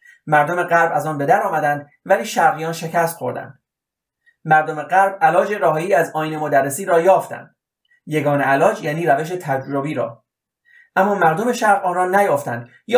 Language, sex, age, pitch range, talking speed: Persian, male, 30-49, 150-205 Hz, 155 wpm